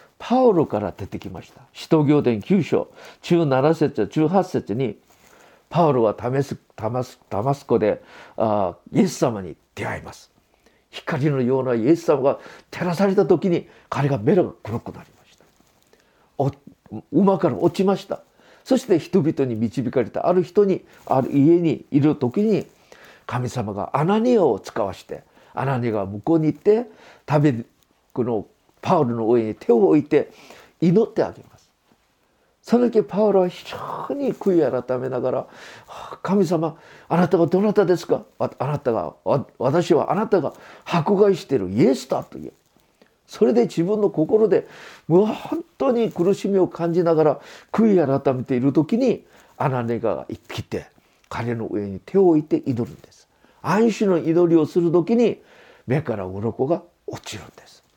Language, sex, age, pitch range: Japanese, male, 50-69, 130-200 Hz